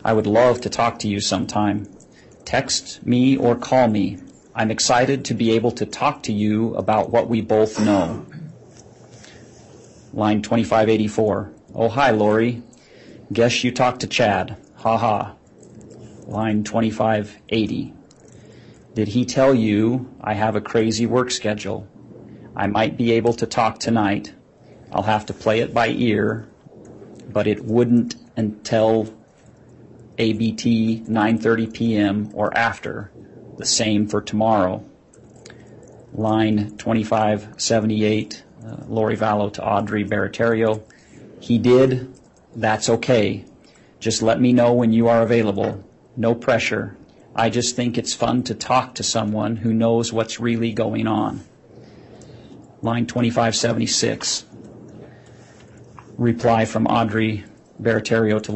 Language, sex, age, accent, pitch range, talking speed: English, male, 40-59, American, 105-115 Hz, 125 wpm